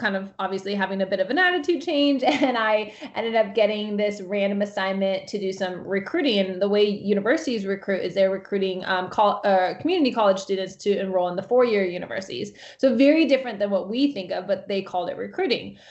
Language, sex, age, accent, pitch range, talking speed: English, female, 20-39, American, 190-215 Hz, 210 wpm